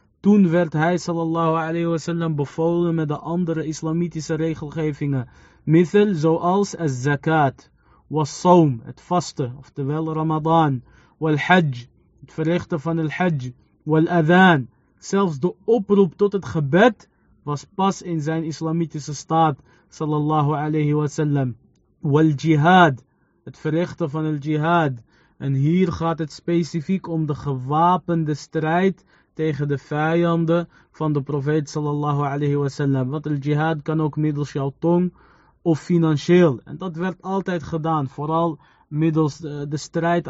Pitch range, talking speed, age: 150-170 Hz, 130 wpm, 20-39